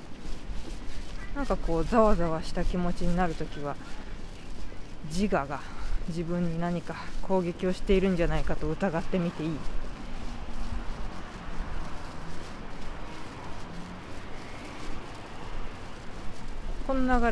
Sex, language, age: female, Japanese, 20-39